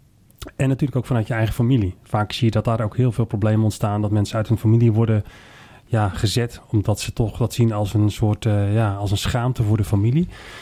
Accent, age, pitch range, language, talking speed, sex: Dutch, 30-49, 110-135 Hz, Dutch, 230 wpm, male